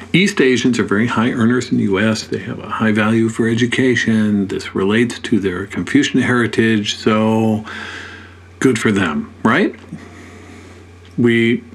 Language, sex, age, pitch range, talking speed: English, male, 50-69, 95-120 Hz, 145 wpm